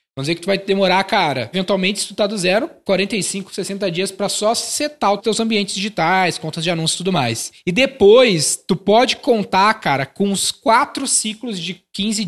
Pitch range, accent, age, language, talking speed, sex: 175-215 Hz, Brazilian, 20-39, Portuguese, 200 wpm, male